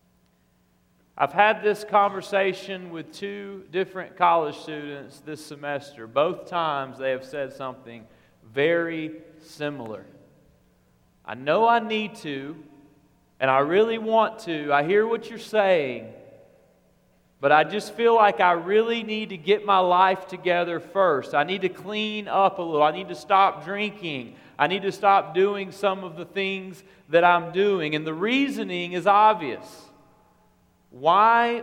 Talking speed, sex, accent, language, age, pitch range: 150 wpm, male, American, English, 40-59, 130-195 Hz